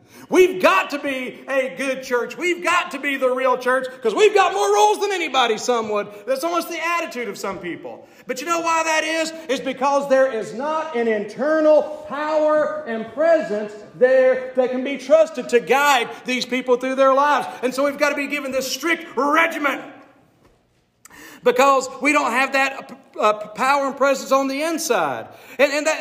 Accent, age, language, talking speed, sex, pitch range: American, 40-59, English, 195 wpm, male, 230-290 Hz